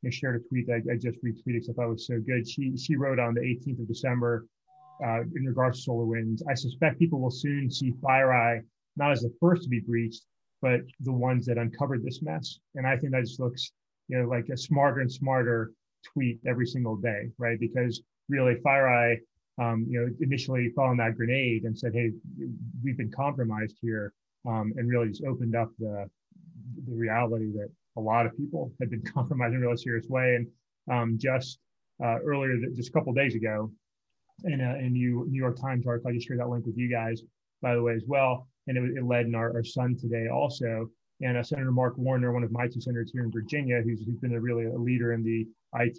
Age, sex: 30-49, male